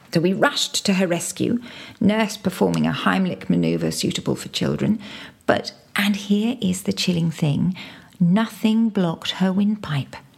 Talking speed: 145 wpm